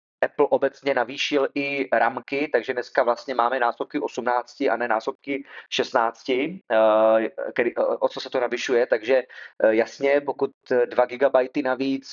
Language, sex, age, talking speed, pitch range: Czech, male, 30-49, 135 wpm, 130-155 Hz